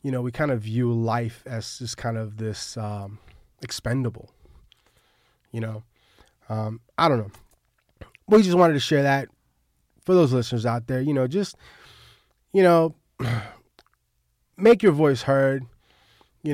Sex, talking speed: male, 150 wpm